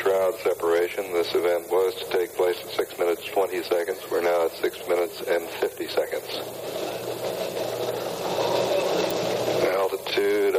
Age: 60-79